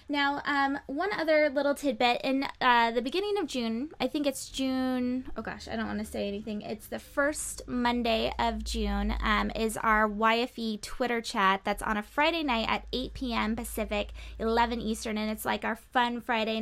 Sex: female